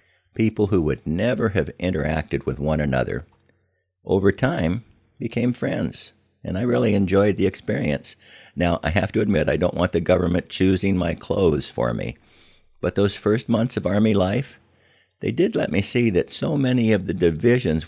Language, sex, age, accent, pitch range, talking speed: English, male, 60-79, American, 80-100 Hz, 175 wpm